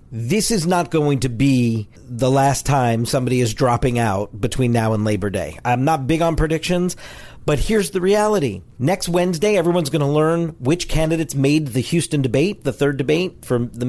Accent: American